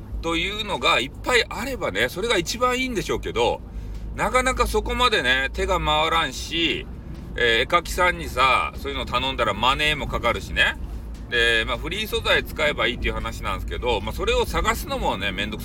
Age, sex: 40-59, male